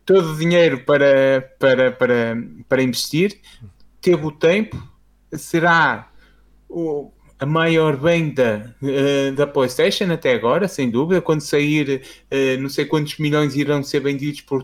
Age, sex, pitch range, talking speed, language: 20-39, male, 140-175 Hz, 140 wpm, Portuguese